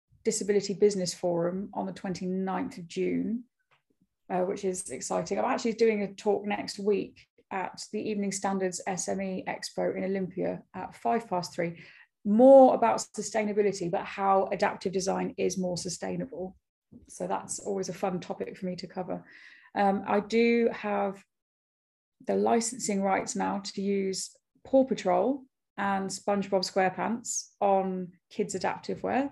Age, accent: 30-49, British